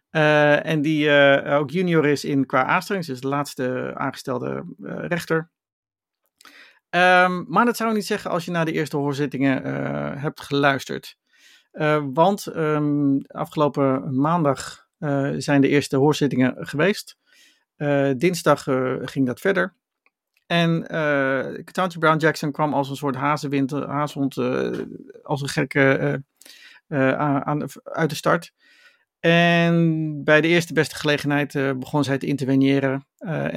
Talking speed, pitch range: 145 wpm, 135-165 Hz